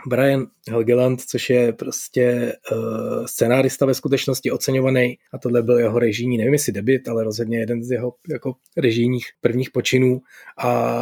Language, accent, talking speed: Czech, native, 140 wpm